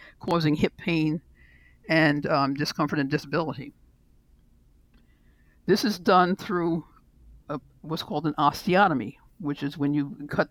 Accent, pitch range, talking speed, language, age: American, 145-190 Hz, 120 wpm, English, 60-79